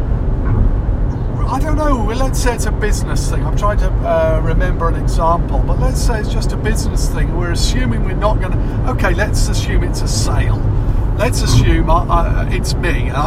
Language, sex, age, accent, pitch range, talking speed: English, male, 50-69, British, 105-125 Hz, 185 wpm